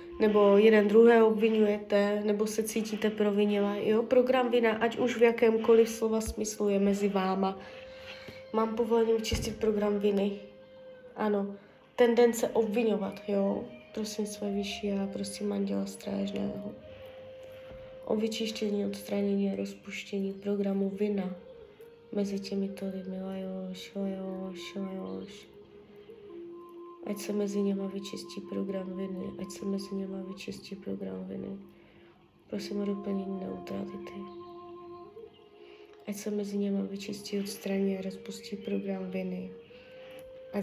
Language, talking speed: Czech, 120 wpm